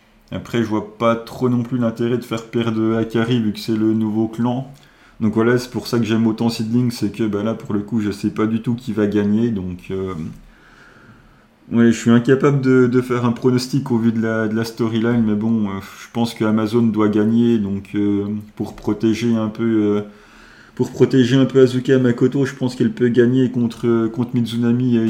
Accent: French